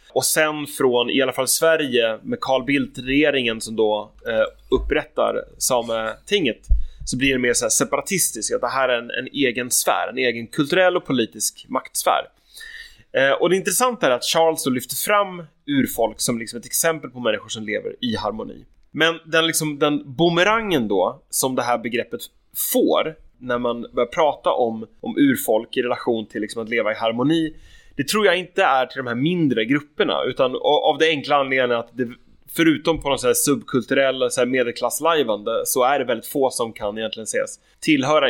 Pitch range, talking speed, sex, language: 120-165 Hz, 180 wpm, male, English